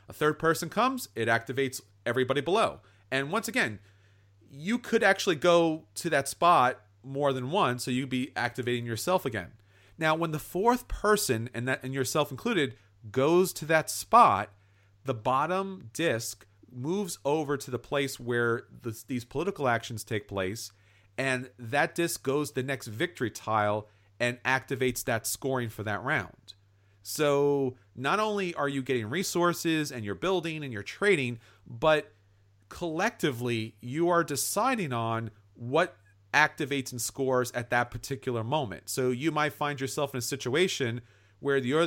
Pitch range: 110-150 Hz